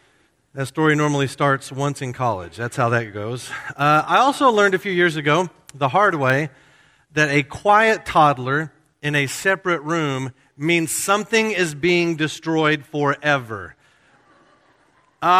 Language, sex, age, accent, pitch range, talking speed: English, male, 40-59, American, 130-165 Hz, 145 wpm